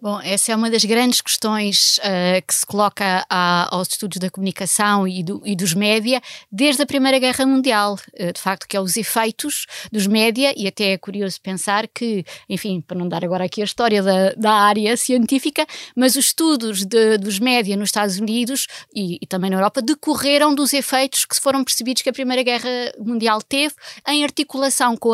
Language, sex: Portuguese, female